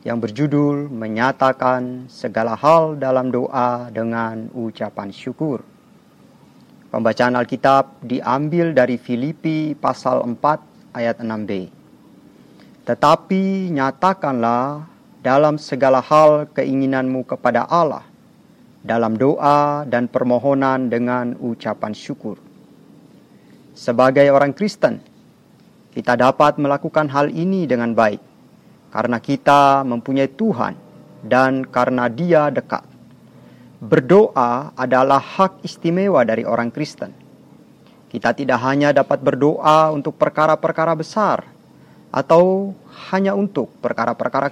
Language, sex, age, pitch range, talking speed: Indonesian, male, 40-59, 125-150 Hz, 95 wpm